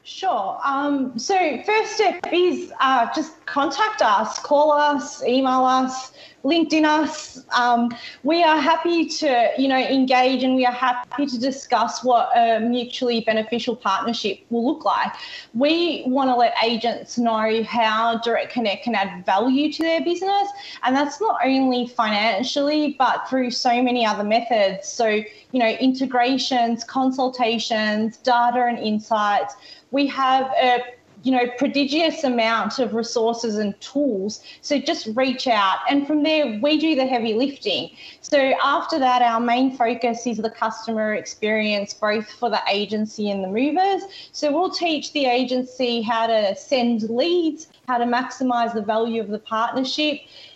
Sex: female